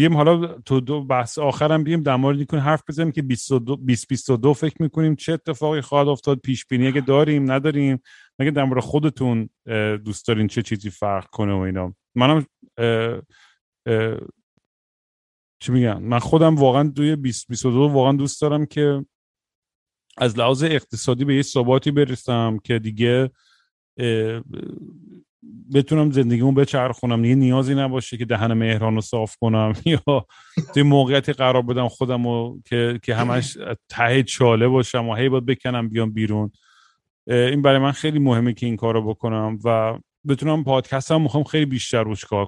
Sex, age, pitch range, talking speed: male, 40-59, 115-145 Hz, 150 wpm